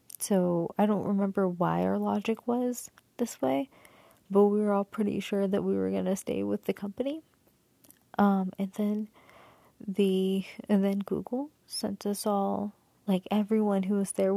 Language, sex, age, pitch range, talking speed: English, female, 20-39, 195-235 Hz, 165 wpm